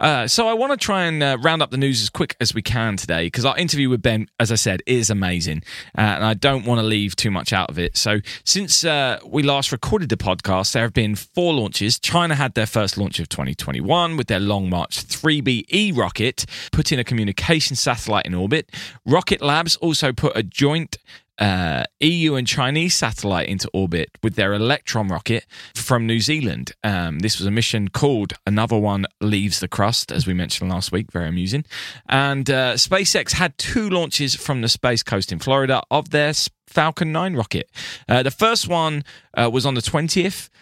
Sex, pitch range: male, 100-150 Hz